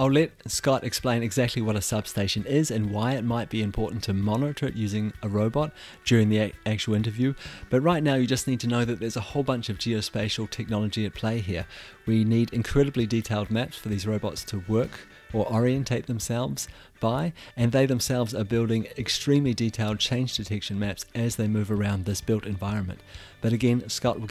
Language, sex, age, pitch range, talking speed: English, male, 30-49, 105-130 Hz, 195 wpm